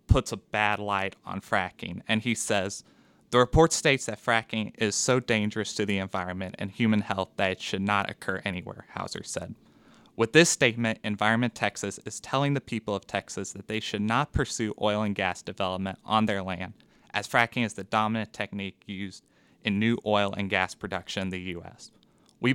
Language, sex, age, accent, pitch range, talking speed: English, male, 20-39, American, 95-115 Hz, 190 wpm